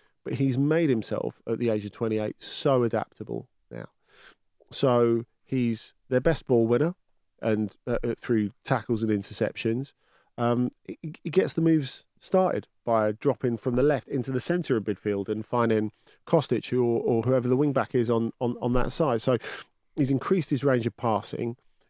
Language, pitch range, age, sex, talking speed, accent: English, 110-140 Hz, 40-59, male, 170 wpm, British